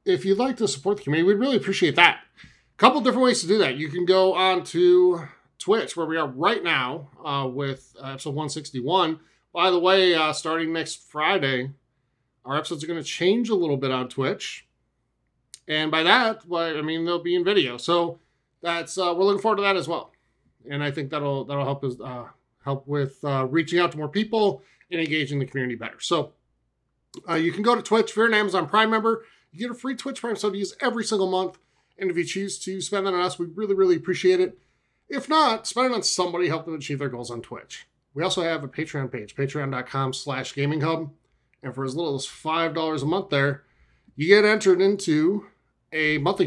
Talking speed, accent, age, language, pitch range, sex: 220 wpm, American, 30-49, English, 140-195 Hz, male